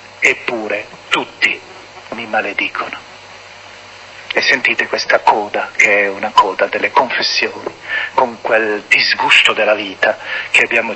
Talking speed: 115 wpm